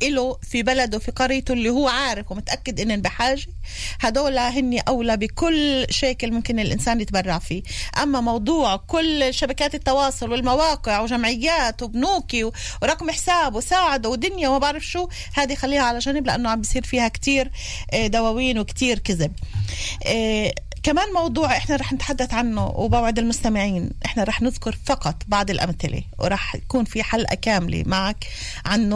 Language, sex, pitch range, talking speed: Hebrew, female, 210-285 Hz, 140 wpm